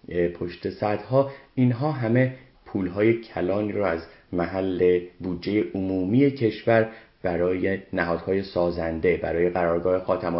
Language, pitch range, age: Persian, 85-105 Hz, 30-49